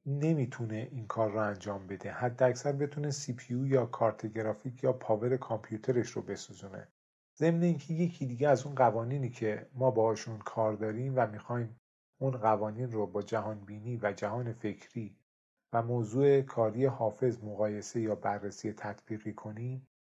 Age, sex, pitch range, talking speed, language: 40-59, male, 110-130 Hz, 150 wpm, Persian